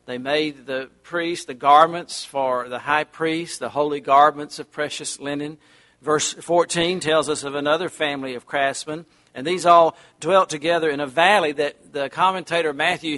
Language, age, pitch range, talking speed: English, 50-69, 140-165 Hz, 170 wpm